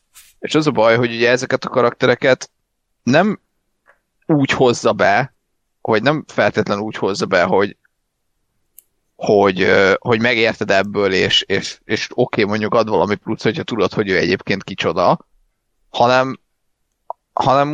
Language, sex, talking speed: Hungarian, male, 140 wpm